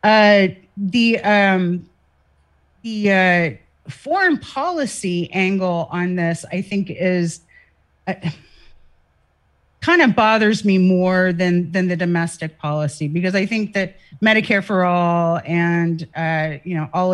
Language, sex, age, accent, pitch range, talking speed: English, female, 40-59, American, 170-205 Hz, 125 wpm